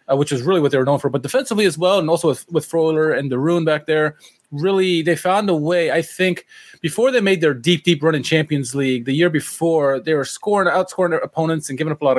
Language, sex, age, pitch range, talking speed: English, male, 20-39, 140-180 Hz, 260 wpm